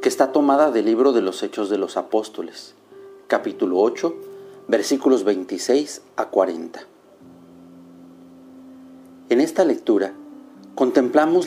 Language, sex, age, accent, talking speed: Spanish, male, 50-69, Mexican, 110 wpm